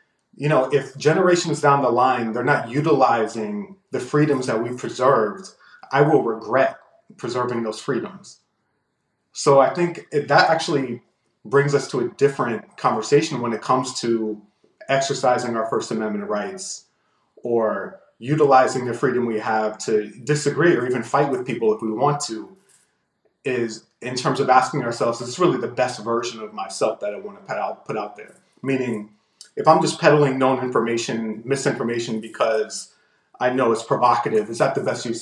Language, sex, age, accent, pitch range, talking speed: English, male, 30-49, American, 115-150 Hz, 170 wpm